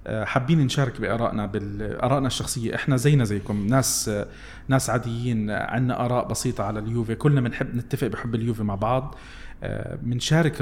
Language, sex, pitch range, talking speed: Arabic, male, 110-135 Hz, 130 wpm